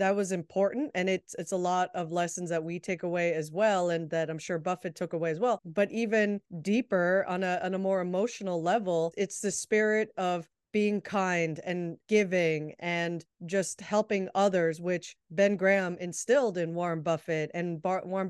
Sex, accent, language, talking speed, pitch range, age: female, American, English, 180 wpm, 175-205 Hz, 30-49